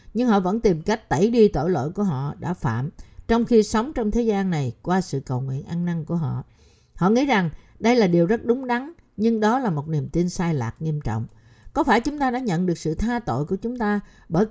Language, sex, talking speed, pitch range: Vietnamese, female, 250 wpm, 160-225 Hz